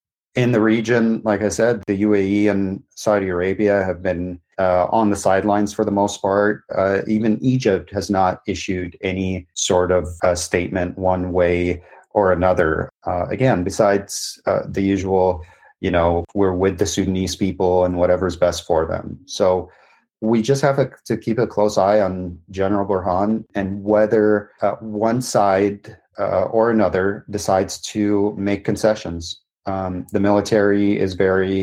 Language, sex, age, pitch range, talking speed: English, male, 30-49, 90-105 Hz, 155 wpm